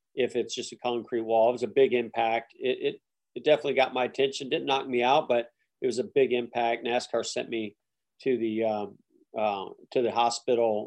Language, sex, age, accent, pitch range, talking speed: English, male, 40-59, American, 120-145 Hz, 210 wpm